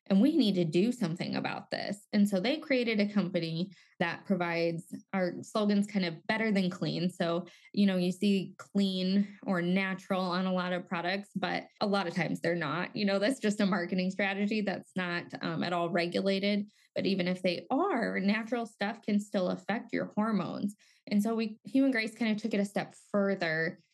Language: English